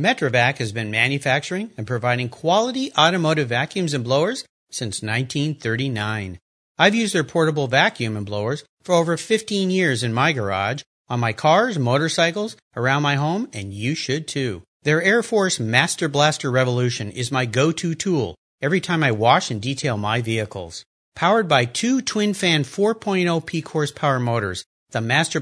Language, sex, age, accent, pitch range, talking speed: English, male, 40-59, American, 120-175 Hz, 155 wpm